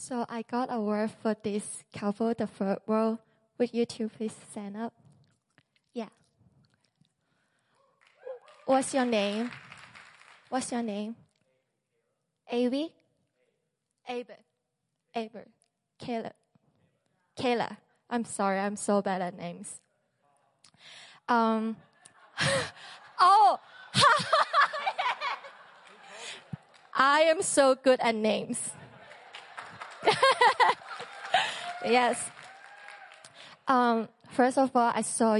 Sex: female